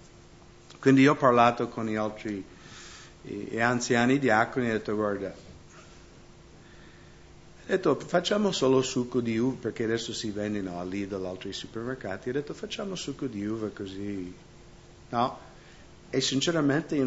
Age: 50-69